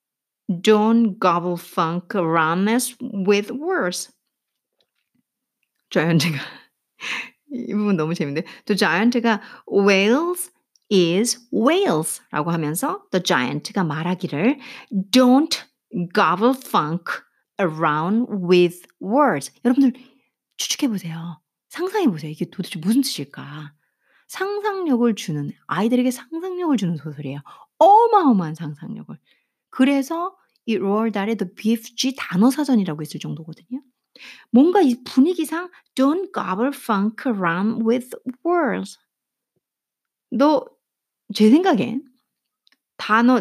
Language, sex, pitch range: Korean, female, 185-280 Hz